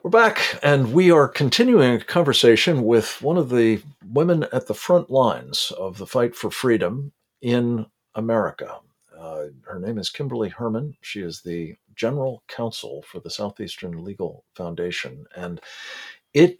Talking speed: 150 wpm